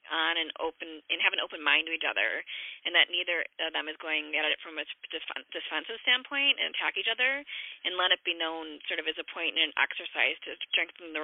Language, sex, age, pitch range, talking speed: English, female, 20-39, 150-170 Hz, 240 wpm